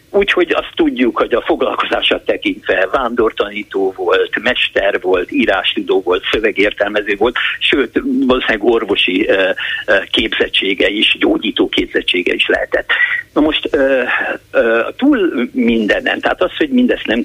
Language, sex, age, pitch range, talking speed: Hungarian, male, 50-69, 275-450 Hz, 120 wpm